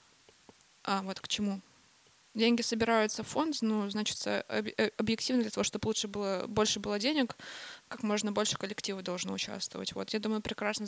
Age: 20-39